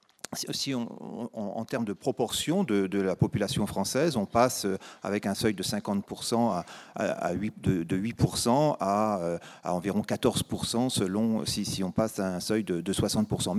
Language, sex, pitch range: French, male, 110-135 Hz